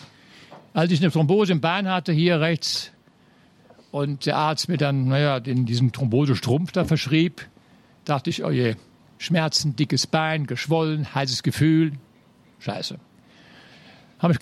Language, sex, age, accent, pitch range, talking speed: German, male, 60-79, German, 135-185 Hz, 135 wpm